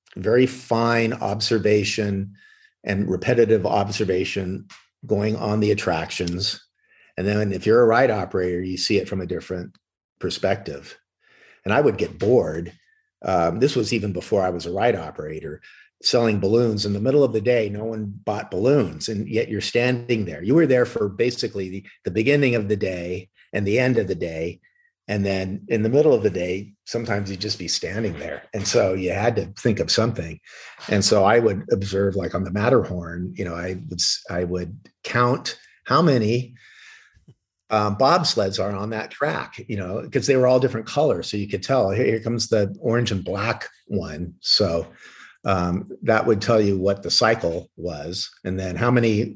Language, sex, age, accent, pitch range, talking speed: English, male, 50-69, American, 95-115 Hz, 185 wpm